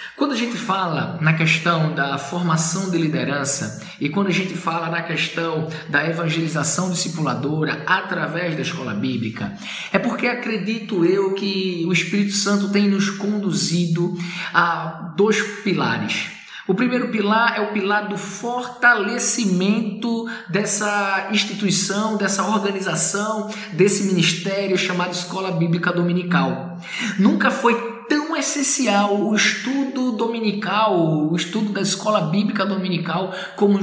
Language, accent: Portuguese, Brazilian